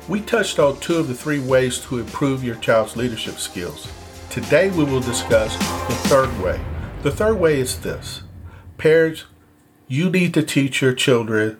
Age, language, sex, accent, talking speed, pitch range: 50-69, English, male, American, 170 wpm, 115-150 Hz